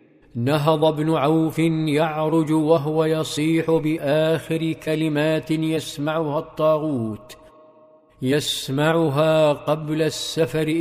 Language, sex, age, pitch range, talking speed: Arabic, male, 50-69, 145-160 Hz, 70 wpm